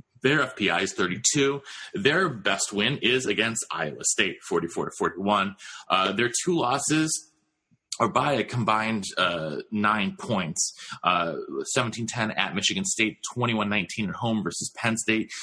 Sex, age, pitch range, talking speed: male, 30-49, 105-130 Hz, 135 wpm